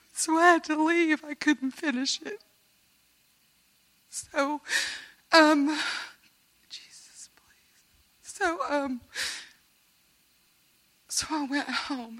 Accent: American